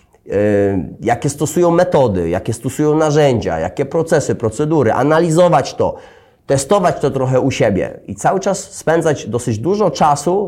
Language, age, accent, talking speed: Polish, 30-49, native, 130 wpm